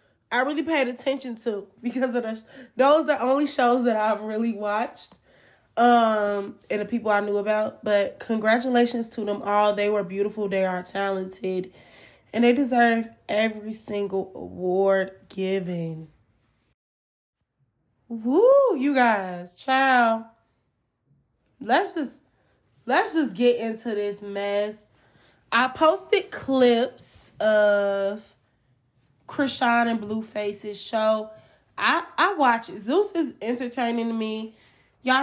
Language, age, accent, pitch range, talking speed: English, 20-39, American, 200-250 Hz, 125 wpm